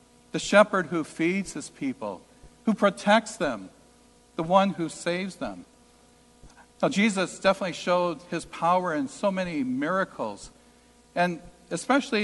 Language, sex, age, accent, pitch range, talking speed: English, male, 60-79, American, 165-215 Hz, 125 wpm